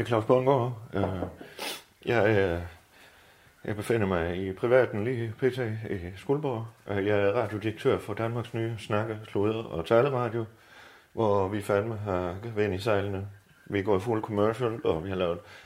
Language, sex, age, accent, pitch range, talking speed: Danish, male, 30-49, native, 100-120 Hz, 160 wpm